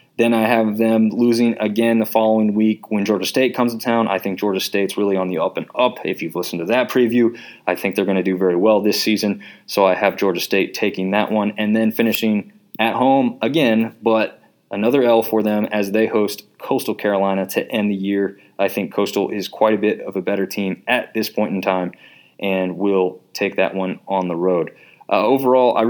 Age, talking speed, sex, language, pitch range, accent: 20-39, 220 wpm, male, English, 100-115 Hz, American